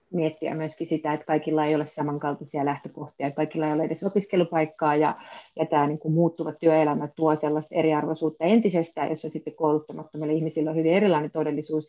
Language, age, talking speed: Finnish, 30-49, 165 wpm